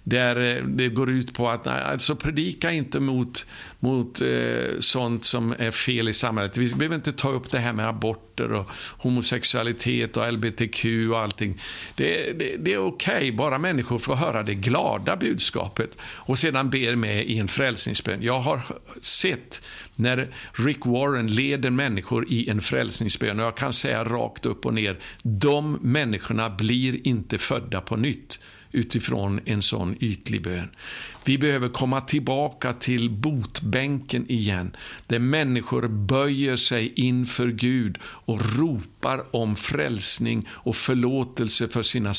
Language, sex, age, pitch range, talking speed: Swedish, male, 60-79, 110-130 Hz, 150 wpm